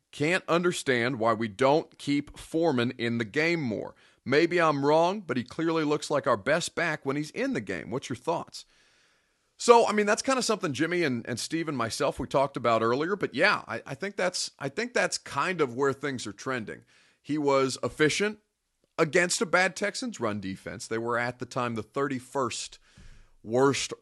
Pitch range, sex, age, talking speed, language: 110-155 Hz, male, 30-49, 190 wpm, English